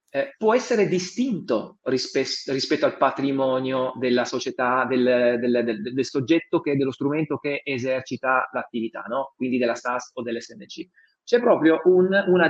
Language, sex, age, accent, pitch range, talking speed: Italian, male, 30-49, native, 135-220 Hz, 155 wpm